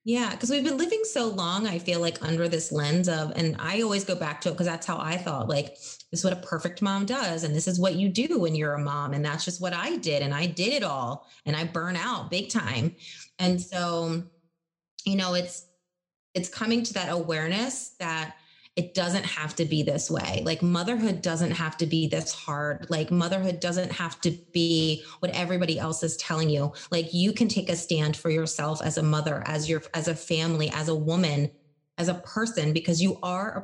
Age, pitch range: 30-49, 155-180 Hz